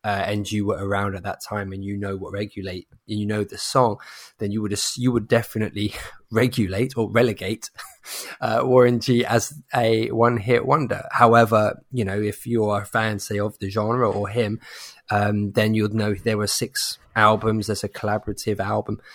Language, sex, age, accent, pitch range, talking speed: English, male, 20-39, British, 100-115 Hz, 190 wpm